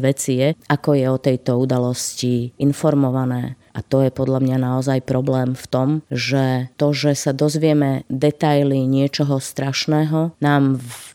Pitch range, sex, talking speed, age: 130-145 Hz, female, 145 wpm, 20-39